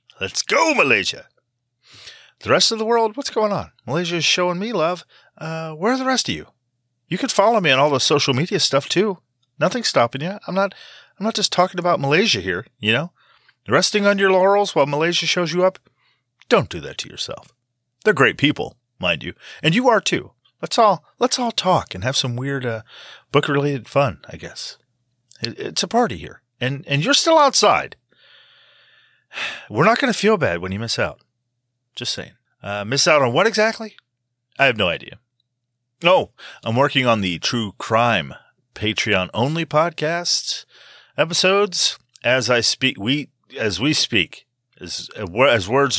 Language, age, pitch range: English, 30-49, 120-185 Hz